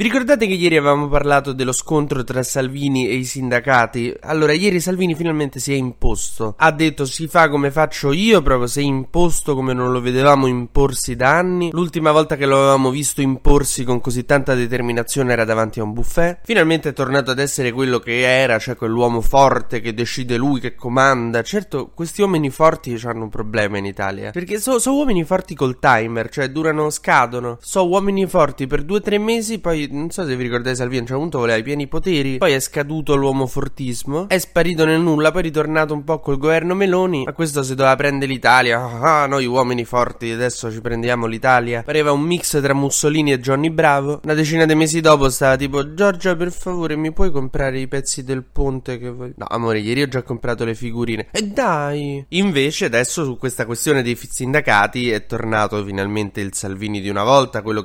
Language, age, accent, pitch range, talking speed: Italian, 20-39, native, 120-155 Hz, 200 wpm